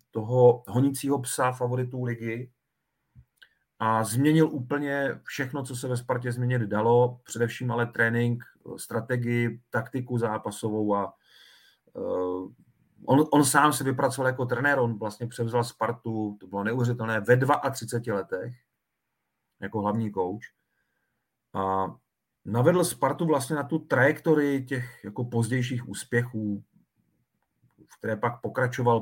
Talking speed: 120 wpm